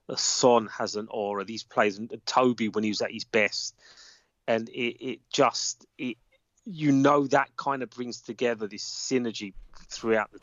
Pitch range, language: 105-130 Hz, English